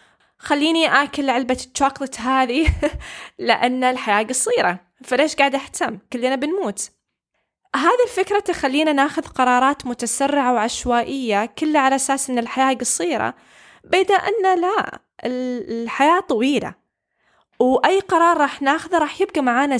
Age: 20-39